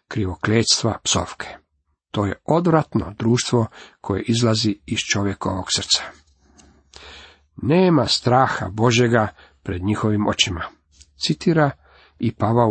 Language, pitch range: Croatian, 100-140 Hz